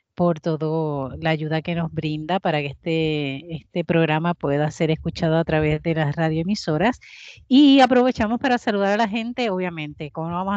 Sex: female